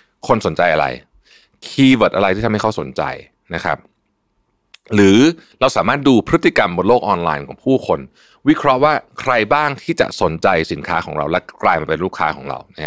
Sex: male